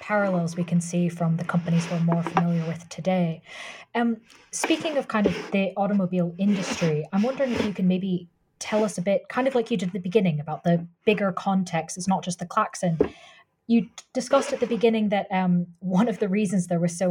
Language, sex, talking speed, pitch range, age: English, female, 215 wpm, 170-210 Hz, 20-39